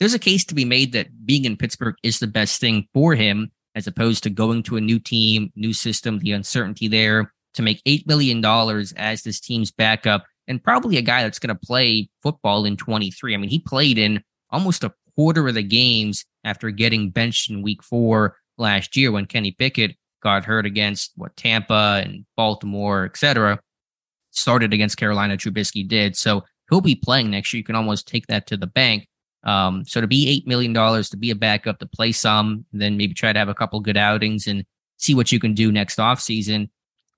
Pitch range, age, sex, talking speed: 105-120 Hz, 20-39, male, 210 wpm